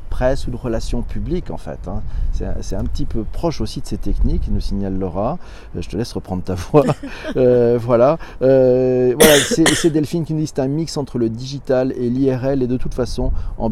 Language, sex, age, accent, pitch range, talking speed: French, male, 40-59, French, 105-140 Hz, 225 wpm